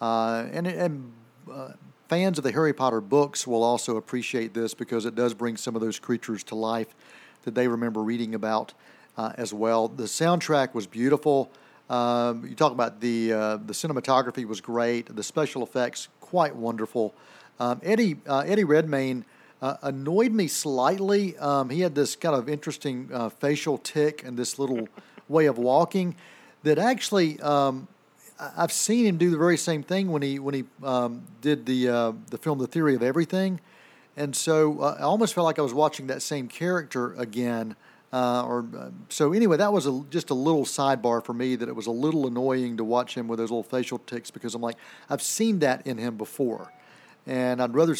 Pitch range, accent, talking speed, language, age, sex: 120-155 Hz, American, 195 wpm, English, 50-69, male